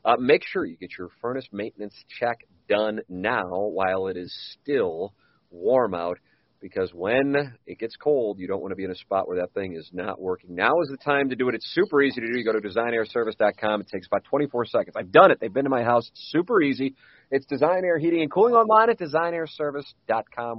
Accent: American